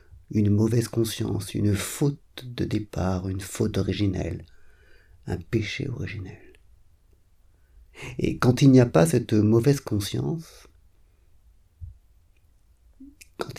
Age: 50-69